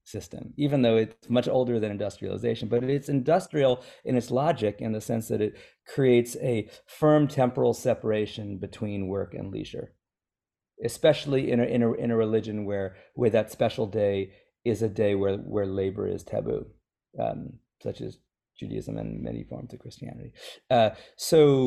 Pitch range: 110-135 Hz